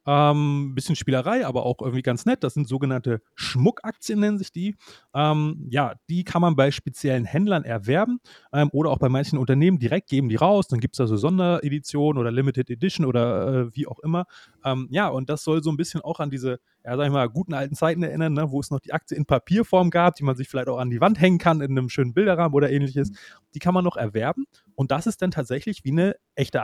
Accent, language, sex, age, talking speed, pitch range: German, German, male, 30-49, 240 wpm, 130-170 Hz